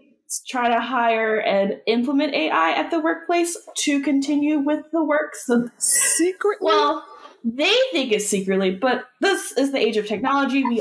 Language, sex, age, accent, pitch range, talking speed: English, female, 20-39, American, 200-290 Hz, 160 wpm